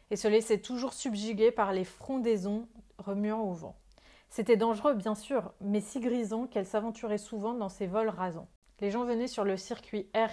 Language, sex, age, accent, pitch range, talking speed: French, female, 30-49, French, 205-240 Hz, 185 wpm